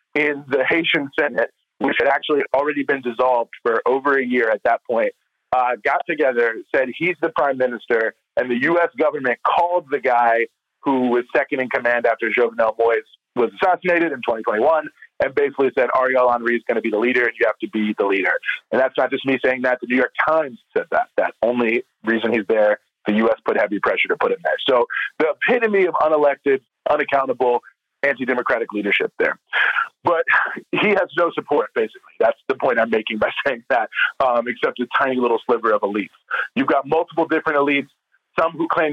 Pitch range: 125-165 Hz